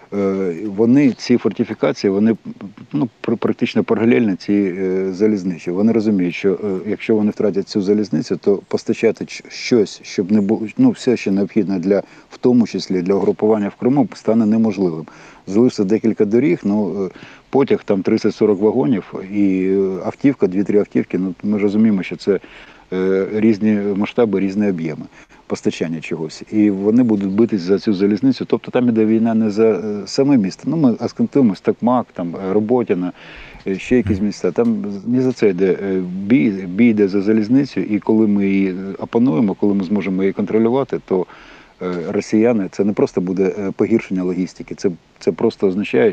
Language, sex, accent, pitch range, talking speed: Ukrainian, male, native, 95-110 Hz, 150 wpm